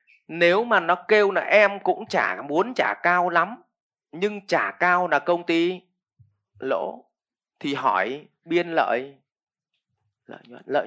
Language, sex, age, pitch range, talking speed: English, male, 20-39, 135-180 Hz, 145 wpm